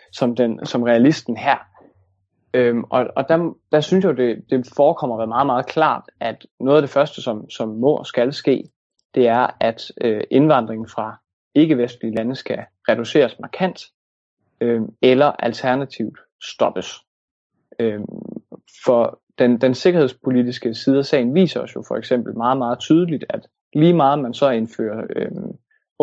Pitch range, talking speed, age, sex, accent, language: 115-140 Hz, 160 wpm, 20-39, male, native, Danish